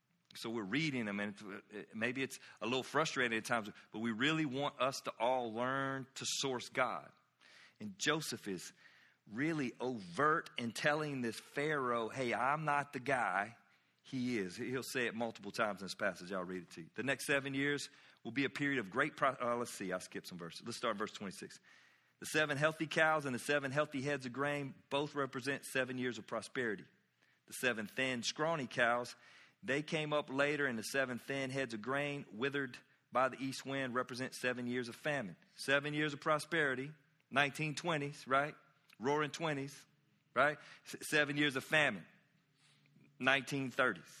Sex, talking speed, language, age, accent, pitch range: male, 180 wpm, English, 40-59, American, 125-150 Hz